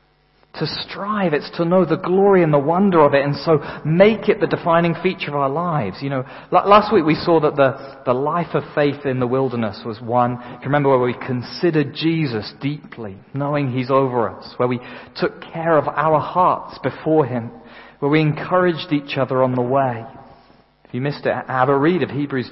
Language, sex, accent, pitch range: English, male, British, 130-180 Hz